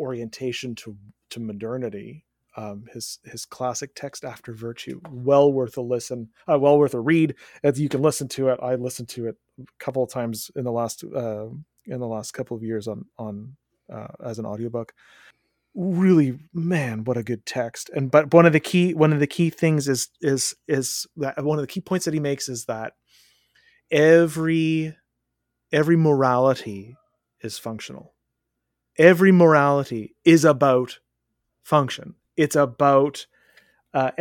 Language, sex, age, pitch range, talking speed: English, male, 30-49, 125-160 Hz, 165 wpm